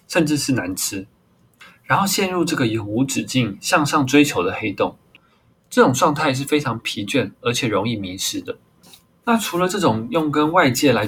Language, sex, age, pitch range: Chinese, male, 20-39, 115-170 Hz